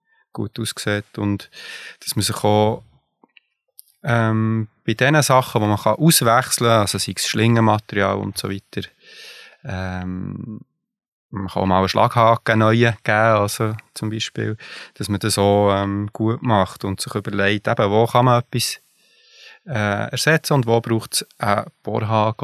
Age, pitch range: 20-39, 100-120 Hz